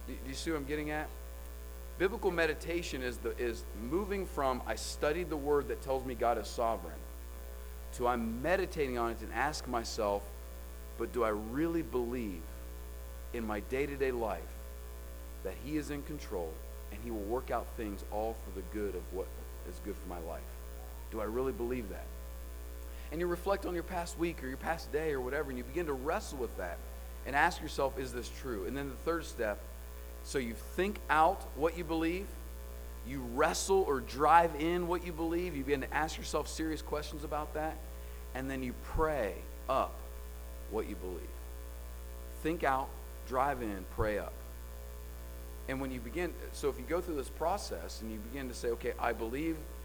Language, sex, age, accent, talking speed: English, male, 40-59, American, 190 wpm